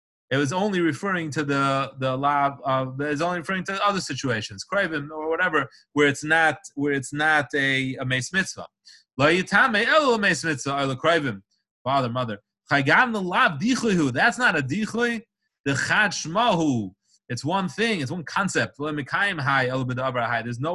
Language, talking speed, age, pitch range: English, 115 wpm, 30-49, 140-200 Hz